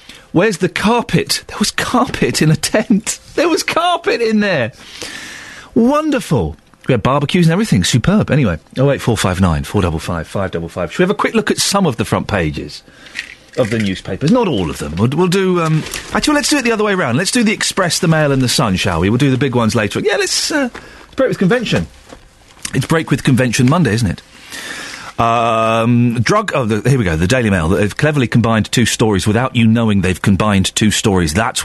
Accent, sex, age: British, male, 40-59